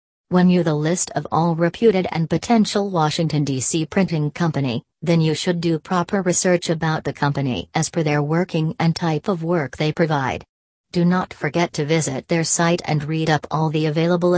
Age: 40-59